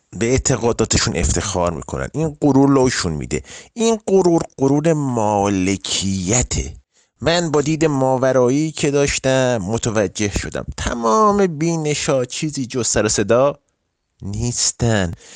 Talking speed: 110 wpm